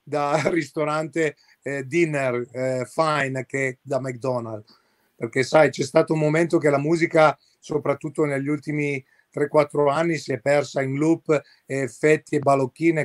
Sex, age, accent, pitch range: male, 40-59, native, 135-155 Hz